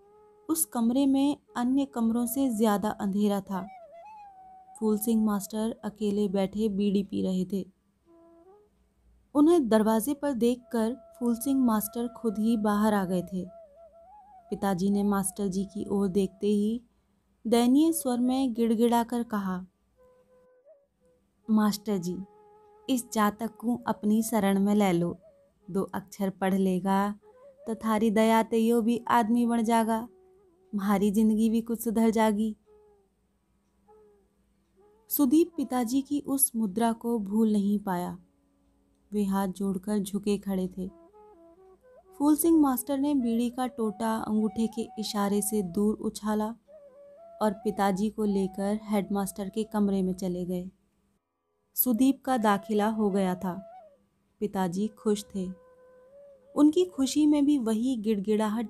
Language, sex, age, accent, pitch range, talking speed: Hindi, female, 20-39, native, 200-270 Hz, 125 wpm